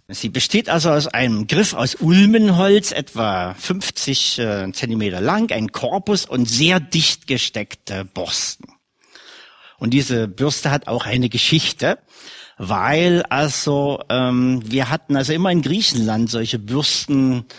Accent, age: German, 50-69